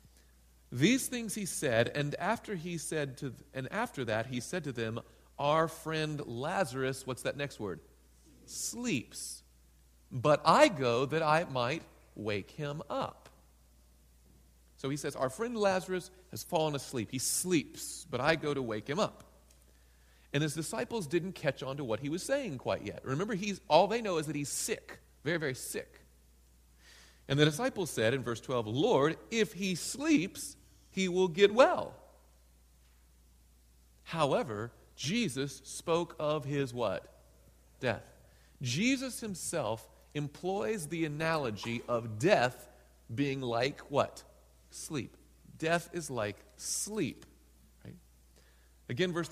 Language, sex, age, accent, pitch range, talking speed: English, male, 40-59, American, 105-175 Hz, 140 wpm